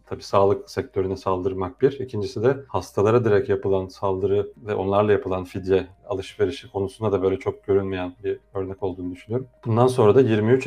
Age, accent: 40-59, native